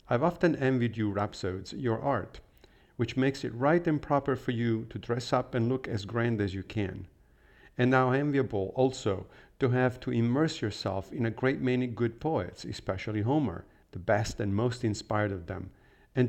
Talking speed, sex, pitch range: 185 wpm, male, 100-125 Hz